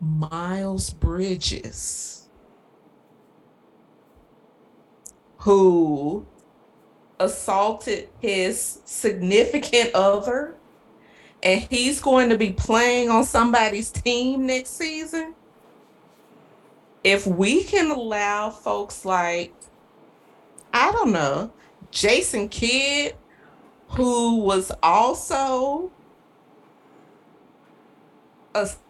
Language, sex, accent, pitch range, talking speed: English, female, American, 195-295 Hz, 70 wpm